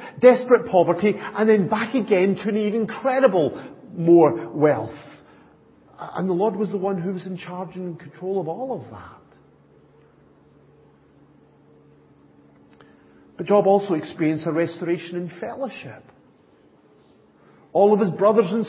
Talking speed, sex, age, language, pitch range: 135 wpm, male, 50-69, English, 150-205 Hz